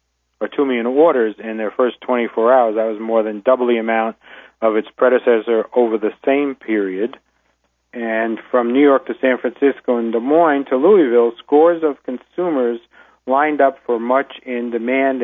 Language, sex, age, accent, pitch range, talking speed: English, male, 40-59, American, 105-120 Hz, 175 wpm